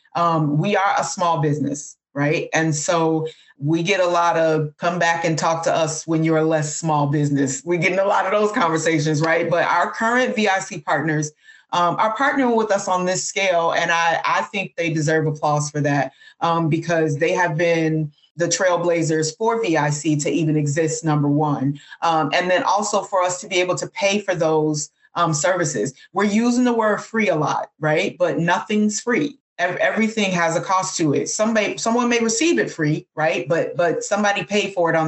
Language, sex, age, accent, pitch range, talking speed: English, female, 30-49, American, 150-180 Hz, 200 wpm